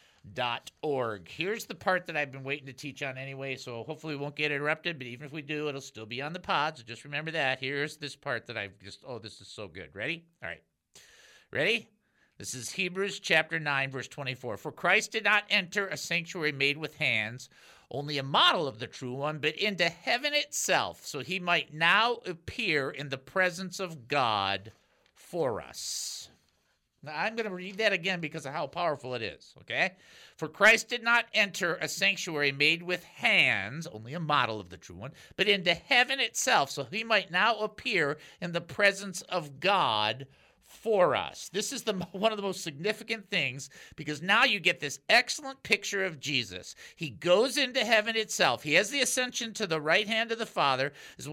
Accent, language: American, English